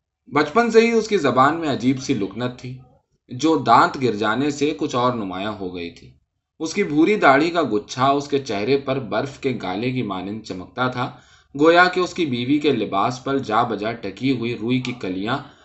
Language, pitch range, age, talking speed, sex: Urdu, 110-155 Hz, 20-39, 205 wpm, male